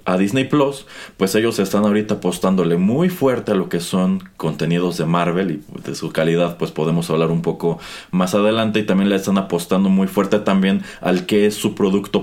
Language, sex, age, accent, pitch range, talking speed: Spanish, male, 30-49, Mexican, 85-110 Hz, 200 wpm